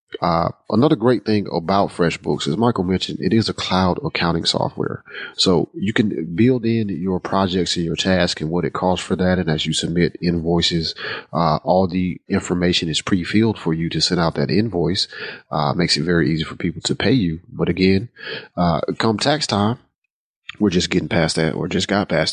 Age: 30-49